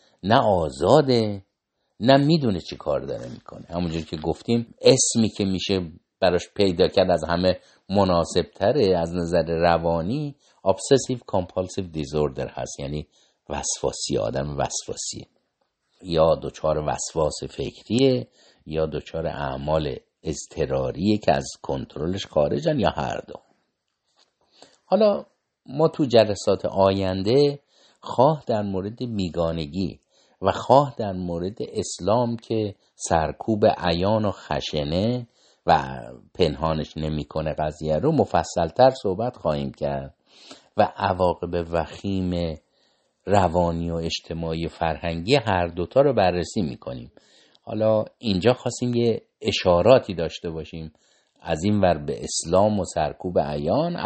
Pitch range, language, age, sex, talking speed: 80-105 Hz, Persian, 50-69, male, 115 wpm